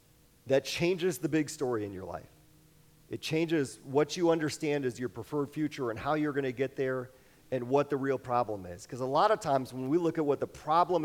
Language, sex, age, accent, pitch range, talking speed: English, male, 40-59, American, 120-155 Hz, 225 wpm